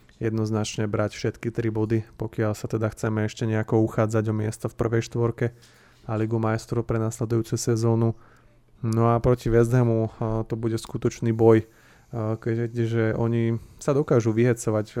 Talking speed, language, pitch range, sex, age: 145 wpm, Slovak, 110-120 Hz, male, 30-49